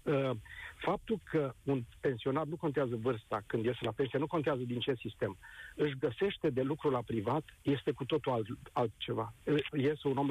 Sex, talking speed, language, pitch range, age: male, 175 wpm, Romanian, 135-180 Hz, 50-69